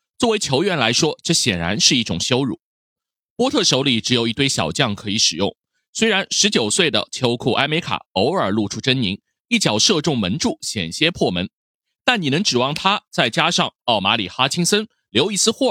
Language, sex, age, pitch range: Chinese, male, 30-49, 110-175 Hz